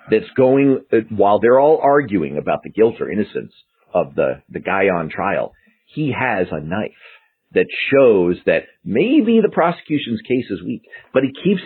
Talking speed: 175 wpm